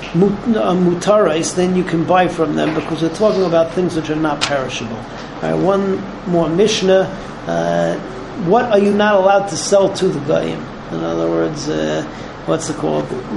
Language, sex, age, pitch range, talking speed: English, male, 40-59, 165-200 Hz, 175 wpm